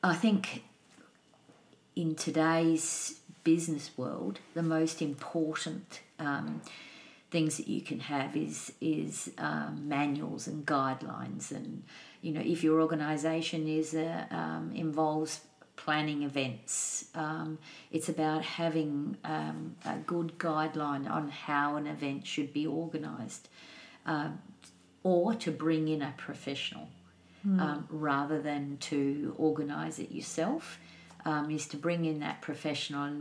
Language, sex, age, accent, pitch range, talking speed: English, female, 50-69, Australian, 145-160 Hz, 125 wpm